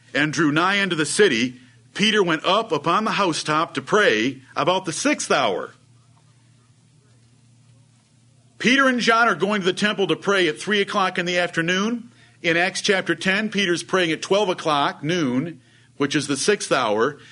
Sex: male